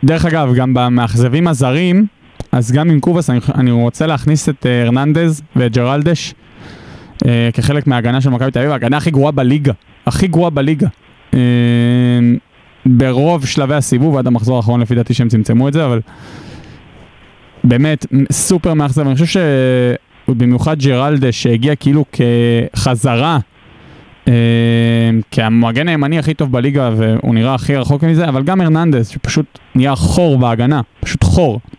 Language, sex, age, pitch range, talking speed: Hebrew, male, 20-39, 120-150 Hz, 145 wpm